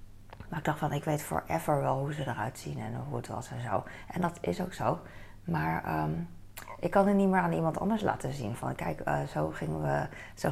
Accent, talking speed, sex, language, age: Dutch, 240 wpm, female, Dutch, 20-39